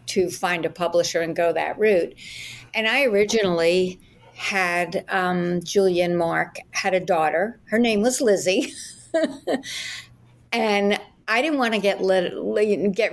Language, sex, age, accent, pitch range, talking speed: English, female, 60-79, American, 175-205 Hz, 135 wpm